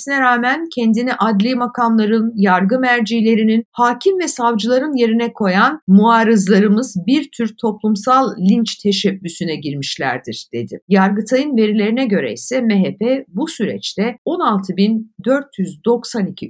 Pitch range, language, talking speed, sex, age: 195-255 Hz, Turkish, 100 wpm, female, 50-69